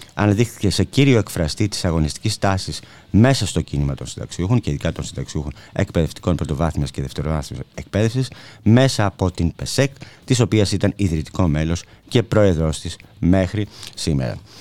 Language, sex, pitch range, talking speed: Greek, male, 75-110 Hz, 145 wpm